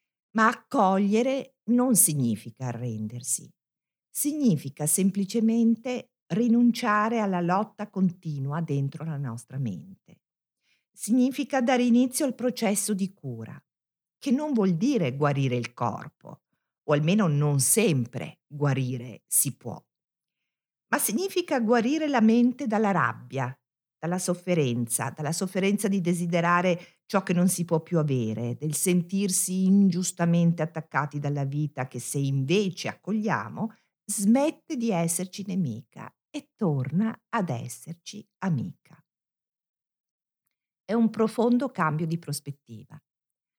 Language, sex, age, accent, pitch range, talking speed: Italian, female, 50-69, native, 145-215 Hz, 110 wpm